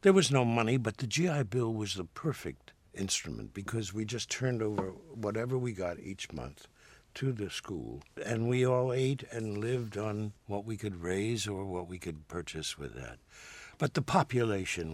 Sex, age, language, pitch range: male, 60-79, English, 95-130 Hz